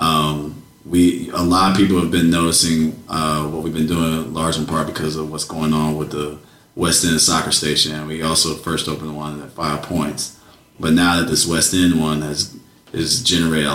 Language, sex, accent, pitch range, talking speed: English, male, American, 75-90 Hz, 205 wpm